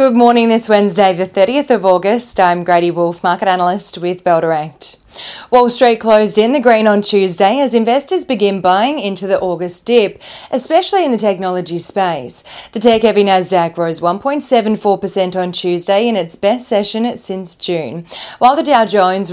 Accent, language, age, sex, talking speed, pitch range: Australian, English, 30-49, female, 170 wpm, 180-230 Hz